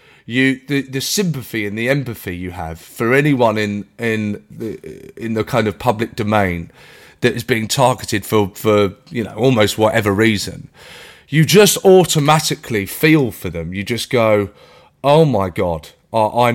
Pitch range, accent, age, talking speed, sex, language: 120-180 Hz, British, 30-49, 165 wpm, male, English